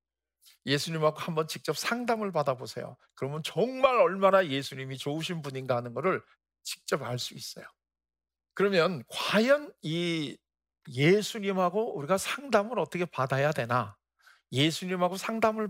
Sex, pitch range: male, 140-210 Hz